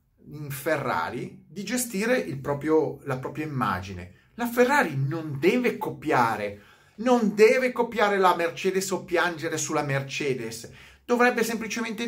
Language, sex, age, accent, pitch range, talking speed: Italian, male, 30-49, native, 125-200 Hz, 125 wpm